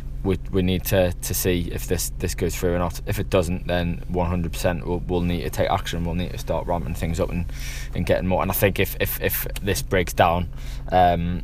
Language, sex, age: English, male, 20-39